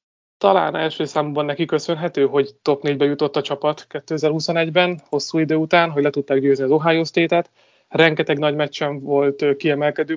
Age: 30-49